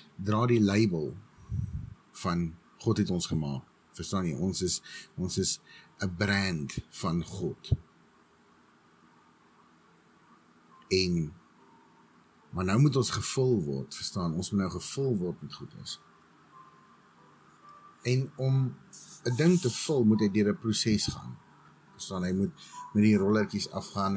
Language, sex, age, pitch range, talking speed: English, male, 50-69, 90-110 Hz, 125 wpm